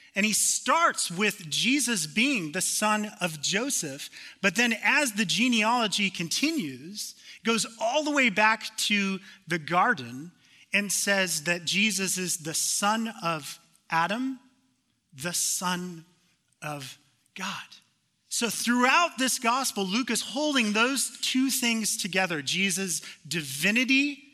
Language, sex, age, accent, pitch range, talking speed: English, male, 30-49, American, 175-230 Hz, 125 wpm